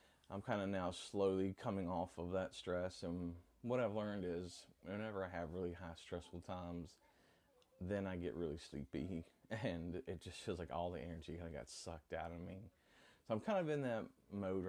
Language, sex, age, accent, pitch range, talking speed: English, male, 20-39, American, 85-100 Hz, 200 wpm